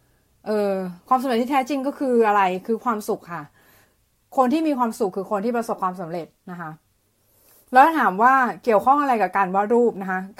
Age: 20-39